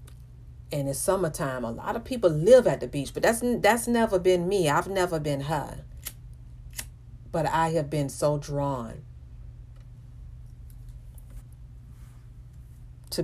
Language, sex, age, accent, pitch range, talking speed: English, female, 40-59, American, 115-165 Hz, 125 wpm